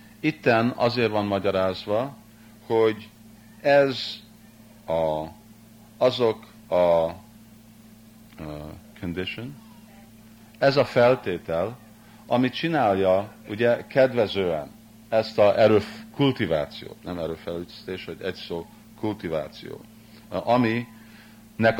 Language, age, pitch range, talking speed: Hungarian, 50-69, 105-120 Hz, 80 wpm